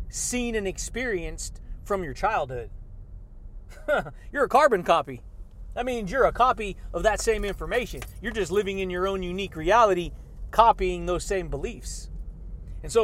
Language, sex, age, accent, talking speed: English, male, 30-49, American, 150 wpm